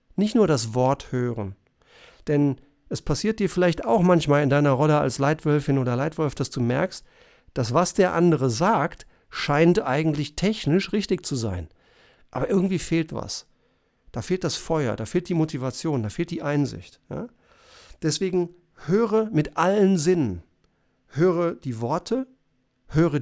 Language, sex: German, male